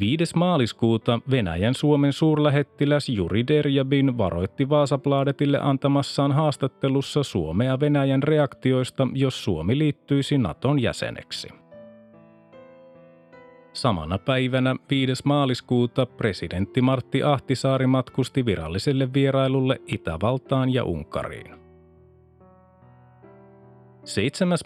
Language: Finnish